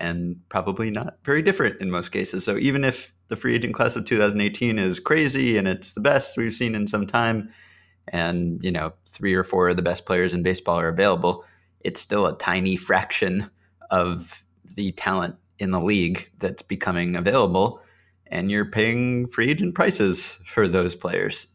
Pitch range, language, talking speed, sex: 90-105 Hz, English, 180 wpm, male